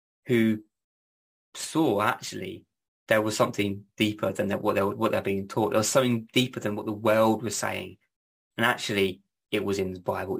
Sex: male